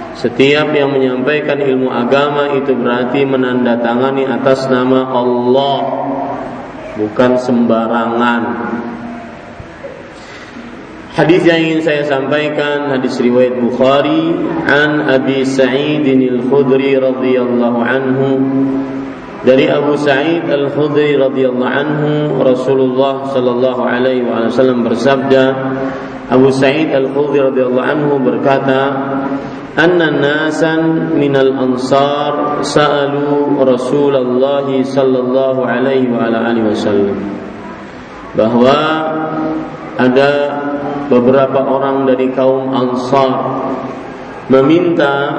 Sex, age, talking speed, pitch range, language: male, 40-59, 90 wpm, 125-140 Hz, Malay